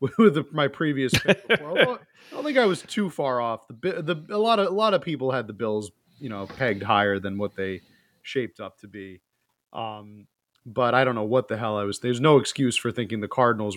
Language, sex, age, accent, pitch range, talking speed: English, male, 30-49, American, 120-160 Hz, 245 wpm